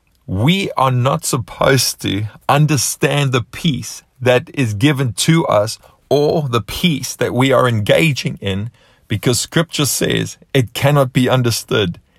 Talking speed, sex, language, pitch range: 140 wpm, male, English, 110-140 Hz